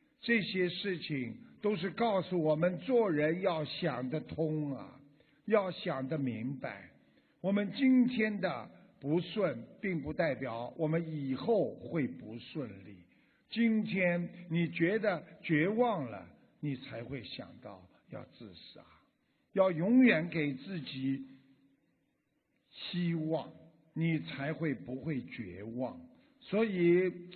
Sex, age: male, 50-69